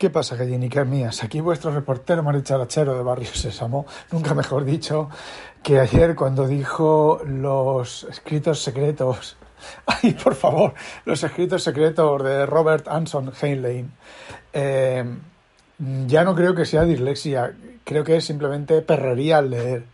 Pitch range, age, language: 130-155 Hz, 60-79, Spanish